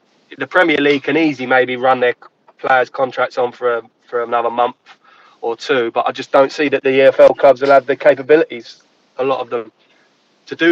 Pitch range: 125-155 Hz